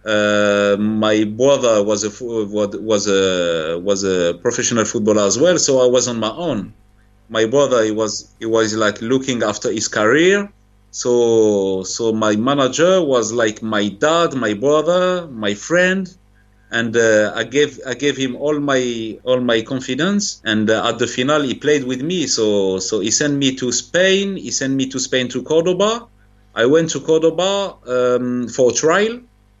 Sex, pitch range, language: male, 105-145 Hz, English